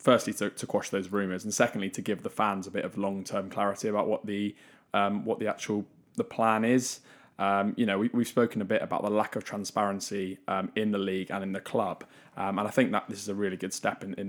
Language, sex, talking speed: English, male, 255 wpm